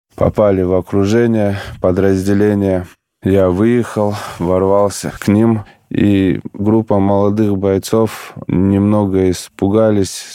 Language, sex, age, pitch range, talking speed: Russian, male, 20-39, 95-105 Hz, 85 wpm